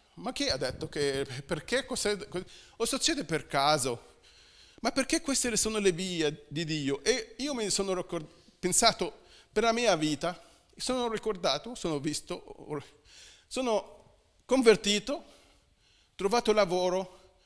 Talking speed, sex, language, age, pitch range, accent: 120 wpm, male, Italian, 40-59, 170-235 Hz, native